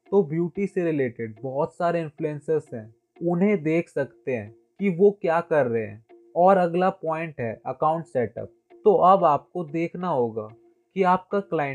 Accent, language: native, Hindi